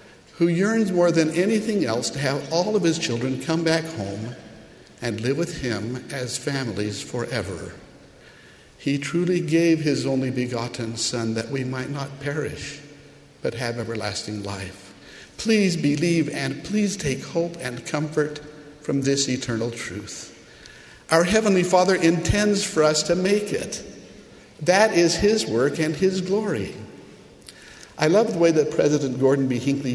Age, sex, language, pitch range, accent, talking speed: 60-79, male, English, 130-170 Hz, American, 150 wpm